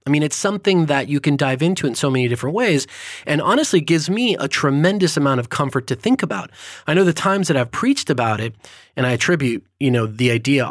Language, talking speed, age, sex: English, 235 wpm, 30-49, male